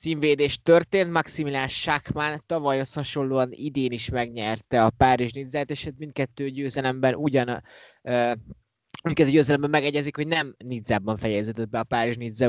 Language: Hungarian